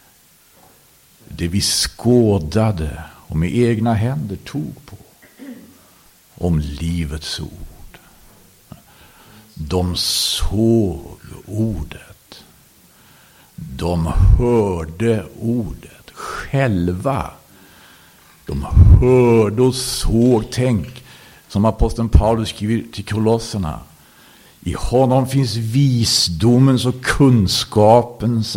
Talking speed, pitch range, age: 75 wpm, 100-130 Hz, 60-79